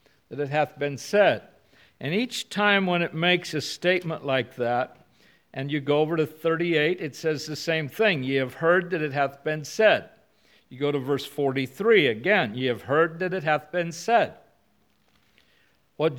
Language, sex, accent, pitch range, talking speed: English, male, American, 145-195 Hz, 180 wpm